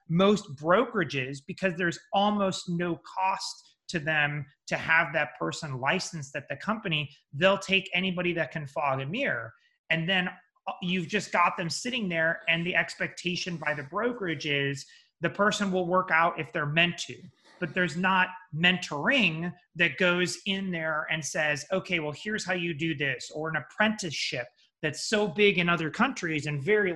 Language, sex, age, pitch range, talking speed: English, male, 30-49, 155-190 Hz, 170 wpm